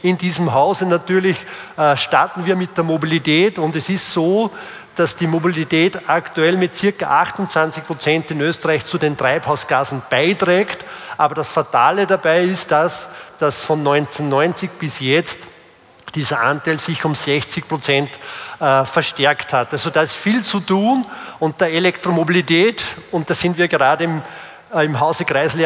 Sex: male